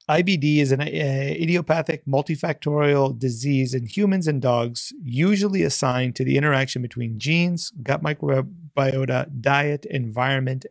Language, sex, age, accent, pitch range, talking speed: English, male, 30-49, American, 135-165 Hz, 120 wpm